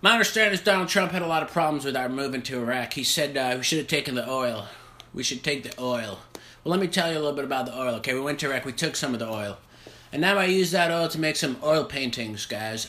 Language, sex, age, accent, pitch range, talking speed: English, male, 30-49, American, 120-160 Hz, 295 wpm